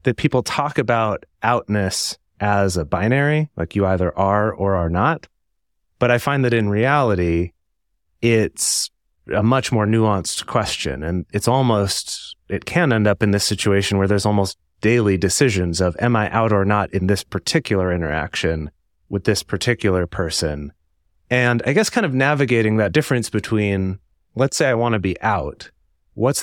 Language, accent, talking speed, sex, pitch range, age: English, American, 165 wpm, male, 95-125 Hz, 30-49